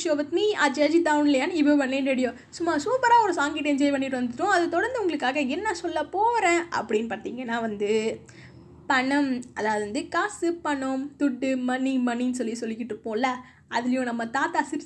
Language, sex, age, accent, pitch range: Tamil, female, 20-39, native, 255-340 Hz